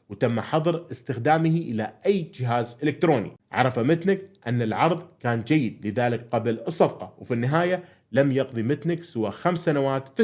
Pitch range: 115-165 Hz